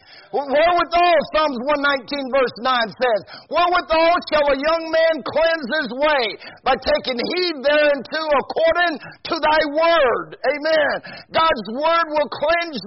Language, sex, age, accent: English, male, 50-69, American